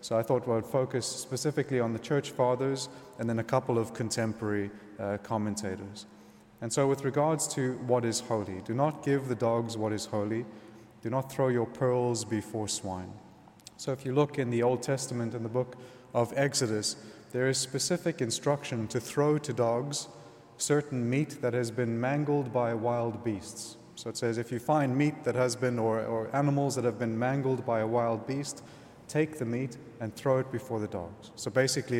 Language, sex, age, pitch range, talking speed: English, male, 30-49, 115-135 Hz, 195 wpm